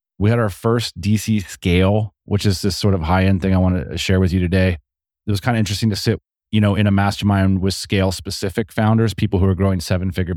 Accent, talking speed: American, 230 wpm